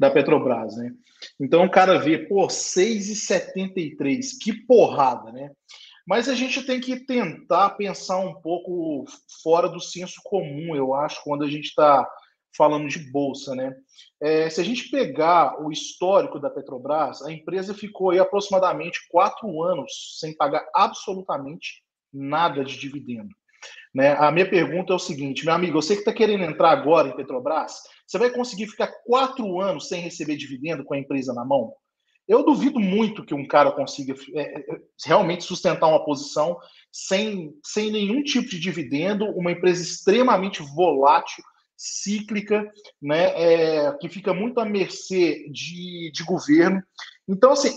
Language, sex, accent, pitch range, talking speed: Portuguese, male, Brazilian, 155-225 Hz, 150 wpm